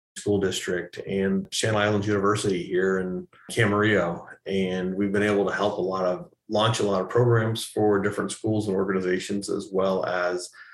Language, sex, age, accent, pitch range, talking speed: English, male, 30-49, American, 100-115 Hz, 175 wpm